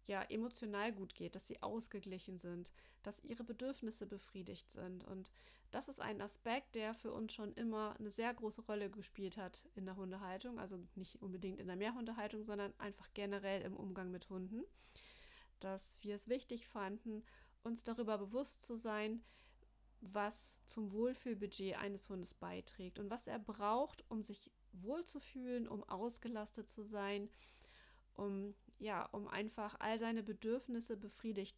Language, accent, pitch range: German, German, 195-235 Hz